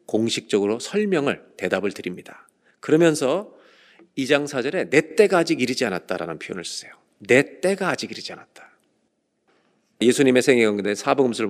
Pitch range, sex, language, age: 135-220 Hz, male, Korean, 40-59